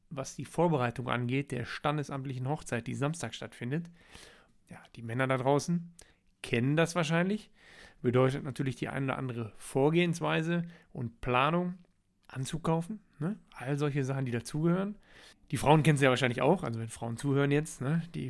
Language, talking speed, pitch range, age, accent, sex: German, 155 wpm, 135-170 Hz, 40-59, German, male